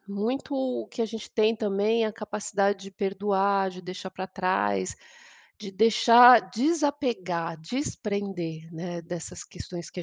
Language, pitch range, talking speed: Portuguese, 175-230 Hz, 145 wpm